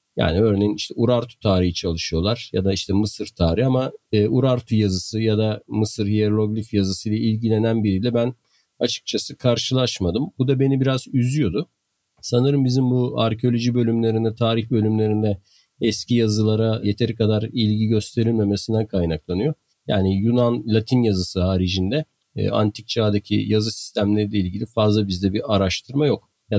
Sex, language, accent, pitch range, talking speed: male, Turkish, native, 100-130 Hz, 135 wpm